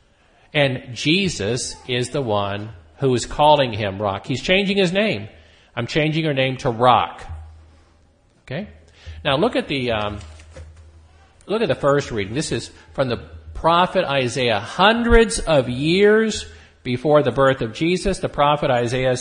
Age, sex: 50-69, male